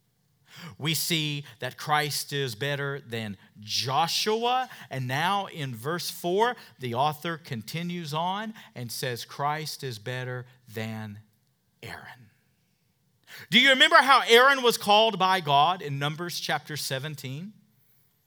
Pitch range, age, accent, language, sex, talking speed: 140-225 Hz, 40-59, American, English, male, 120 wpm